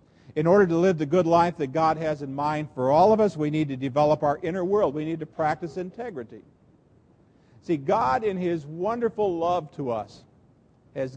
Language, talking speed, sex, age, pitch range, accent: English, 200 wpm, male, 50-69, 150-195 Hz, American